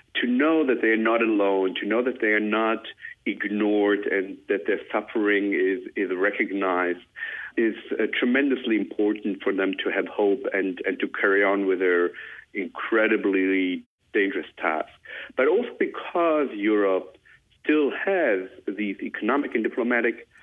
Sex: male